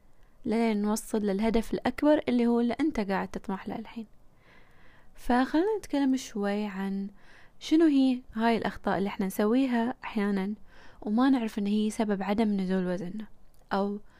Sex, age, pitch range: female, 20-39, 210-240 Hz